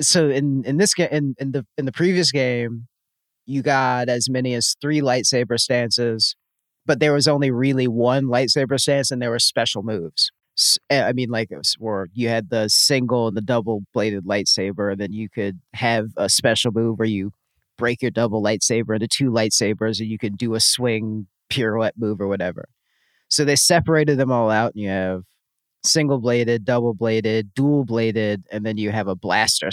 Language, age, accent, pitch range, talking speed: English, 30-49, American, 110-135 Hz, 185 wpm